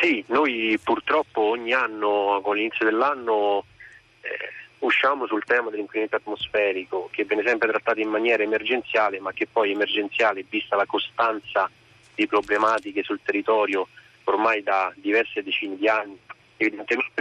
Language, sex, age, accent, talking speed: Italian, male, 30-49, native, 135 wpm